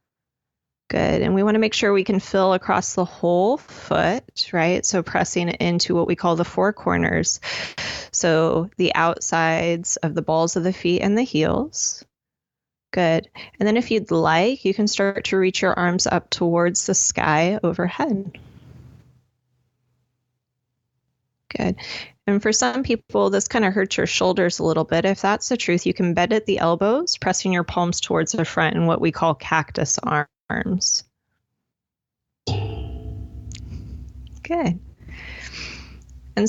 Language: English